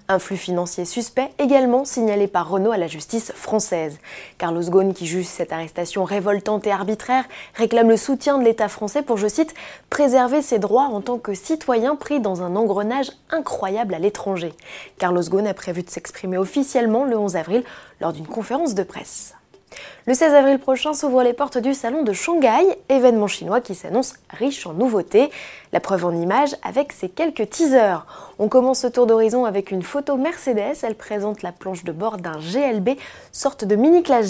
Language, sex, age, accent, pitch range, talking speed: French, female, 20-39, French, 190-270 Hz, 185 wpm